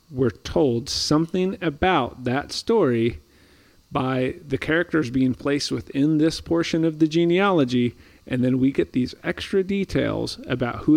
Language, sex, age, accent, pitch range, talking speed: English, male, 40-59, American, 115-150 Hz, 140 wpm